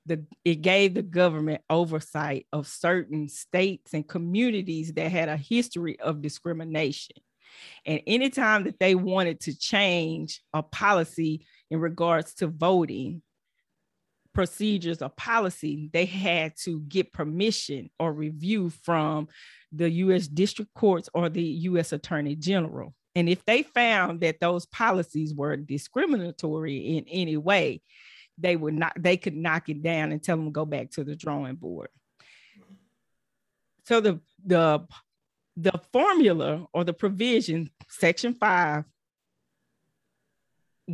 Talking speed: 130 wpm